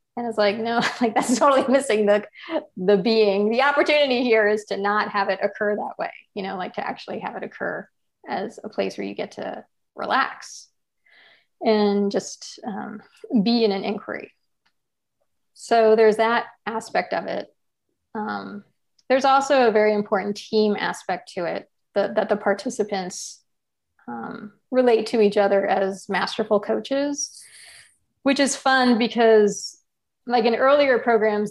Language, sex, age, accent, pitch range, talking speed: English, female, 30-49, American, 200-235 Hz, 155 wpm